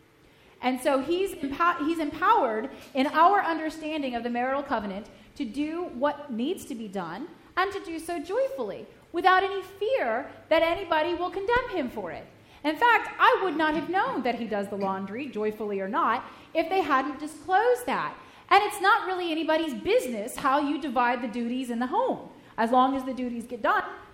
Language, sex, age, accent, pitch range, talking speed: English, female, 30-49, American, 245-340 Hz, 190 wpm